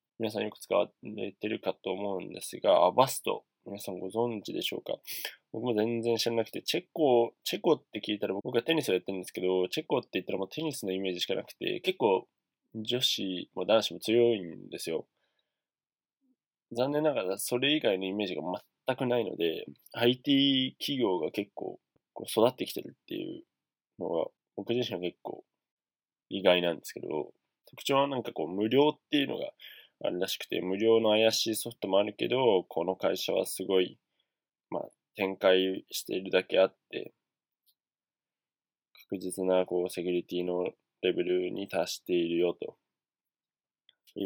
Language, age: Japanese, 20-39